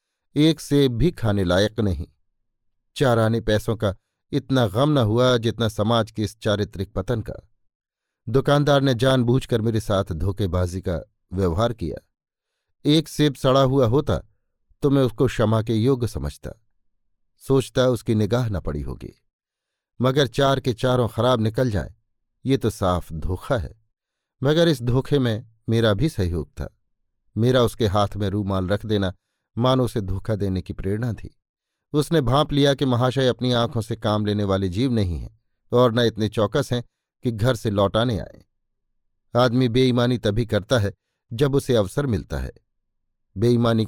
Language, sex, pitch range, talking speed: Hindi, male, 105-130 Hz, 160 wpm